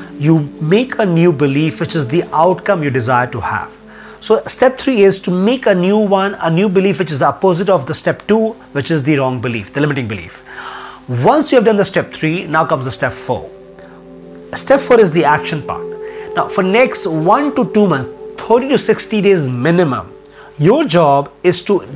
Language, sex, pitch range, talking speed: English, male, 145-215 Hz, 205 wpm